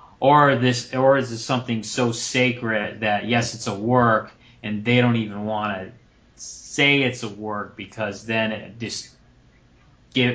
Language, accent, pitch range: English, American, 105-125 Hz